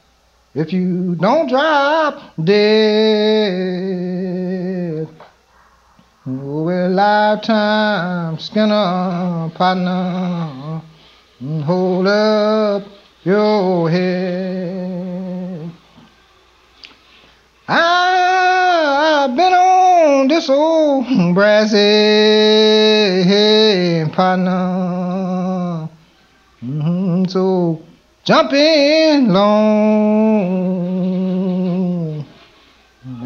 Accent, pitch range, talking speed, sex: American, 180-215 Hz, 50 wpm, male